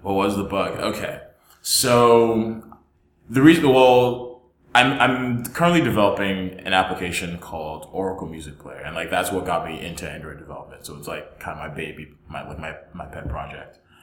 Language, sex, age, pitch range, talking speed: English, male, 20-39, 85-105 Hz, 175 wpm